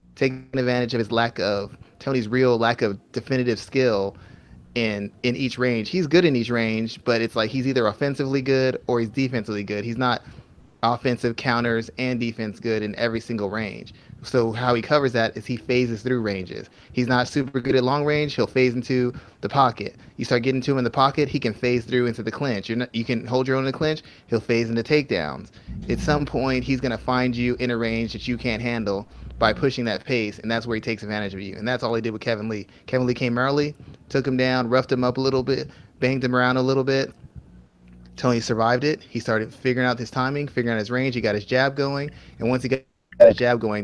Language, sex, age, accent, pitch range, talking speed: English, male, 30-49, American, 115-130 Hz, 235 wpm